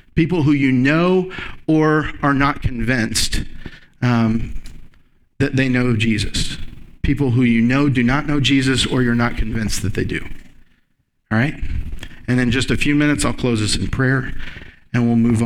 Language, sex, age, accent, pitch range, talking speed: English, male, 50-69, American, 110-140 Hz, 170 wpm